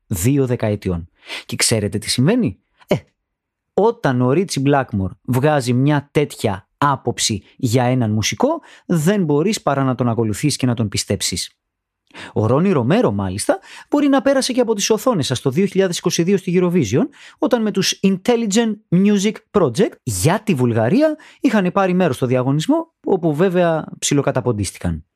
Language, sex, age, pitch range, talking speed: Greek, male, 30-49, 120-195 Hz, 145 wpm